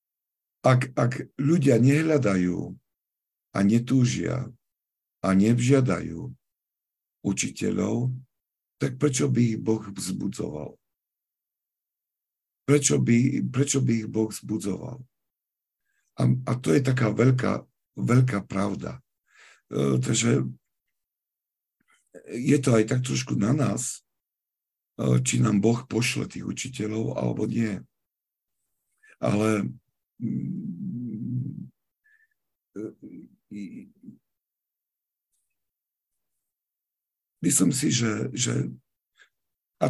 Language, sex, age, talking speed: Slovak, male, 50-69, 80 wpm